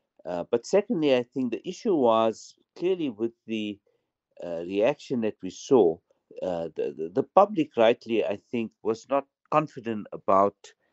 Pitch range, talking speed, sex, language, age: 100-130 Hz, 155 wpm, male, English, 60-79